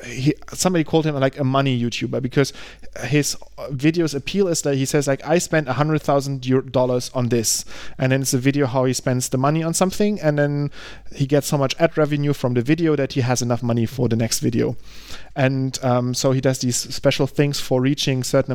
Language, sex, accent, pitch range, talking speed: English, male, German, 125-145 Hz, 225 wpm